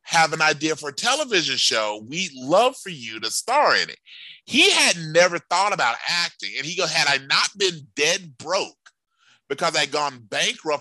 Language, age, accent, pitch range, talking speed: English, 30-49, American, 145-190 Hz, 190 wpm